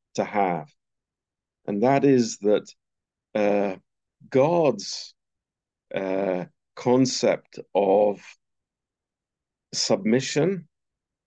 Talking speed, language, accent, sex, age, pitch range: 65 wpm, Romanian, British, male, 50-69, 105-130 Hz